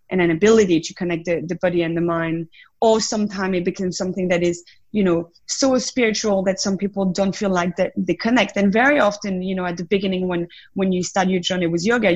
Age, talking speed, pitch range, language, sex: 20-39, 230 wpm, 175-205 Hz, English, female